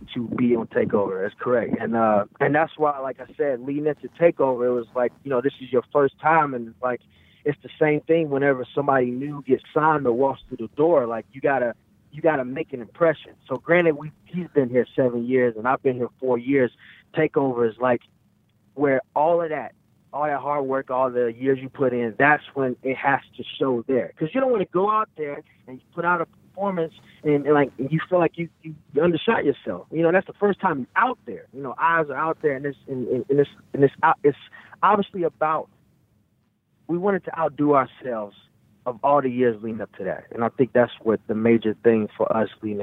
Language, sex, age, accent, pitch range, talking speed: English, male, 20-39, American, 120-150 Hz, 230 wpm